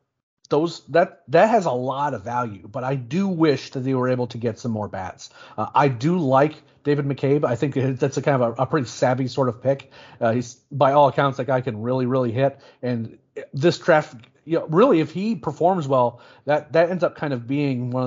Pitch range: 130-150 Hz